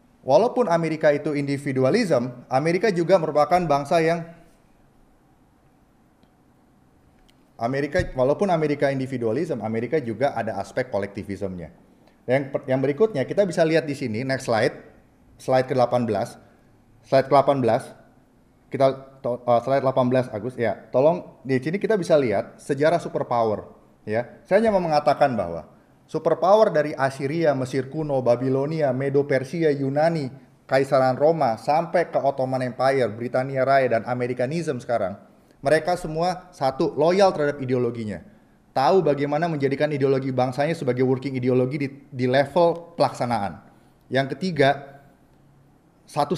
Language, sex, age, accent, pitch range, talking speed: Indonesian, male, 30-49, native, 130-160 Hz, 120 wpm